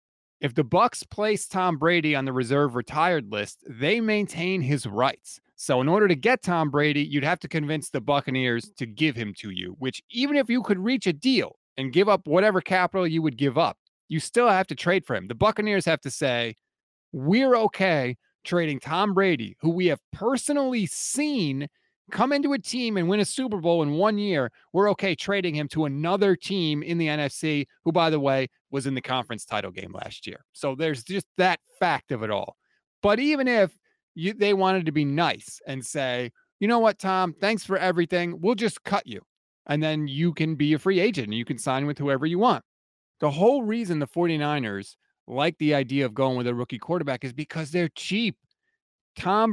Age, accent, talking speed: 30-49, American, 205 wpm